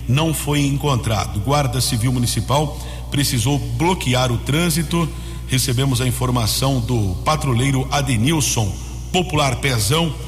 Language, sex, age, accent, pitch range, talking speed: Portuguese, male, 50-69, Brazilian, 120-145 Hz, 105 wpm